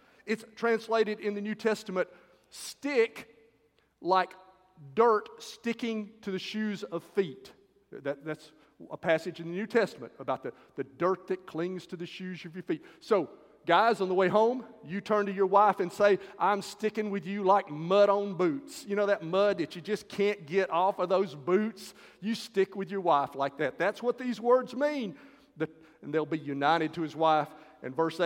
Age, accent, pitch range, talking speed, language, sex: 40-59, American, 170-225 Hz, 190 wpm, English, male